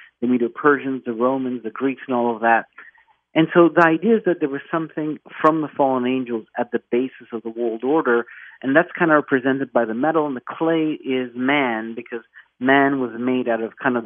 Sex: male